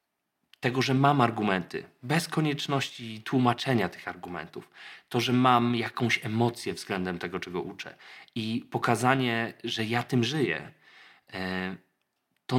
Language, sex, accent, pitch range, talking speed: Polish, male, native, 110-130 Hz, 120 wpm